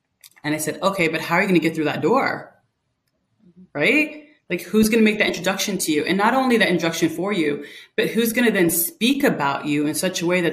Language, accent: English, American